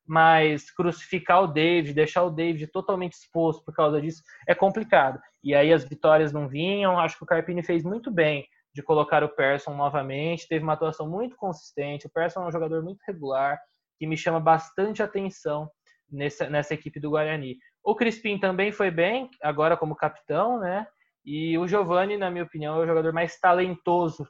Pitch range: 145-180 Hz